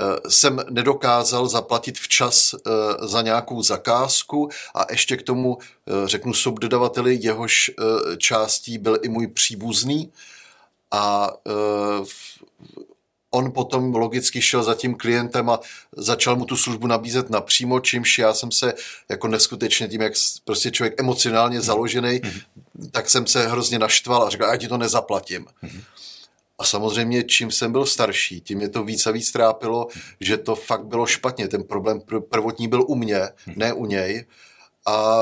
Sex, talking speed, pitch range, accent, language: male, 145 wpm, 110-125 Hz, native, Czech